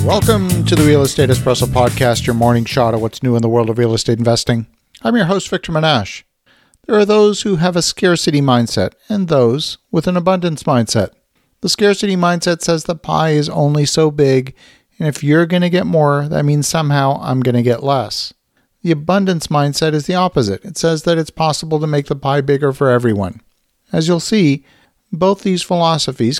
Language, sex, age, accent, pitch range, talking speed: English, male, 50-69, American, 135-175 Hz, 200 wpm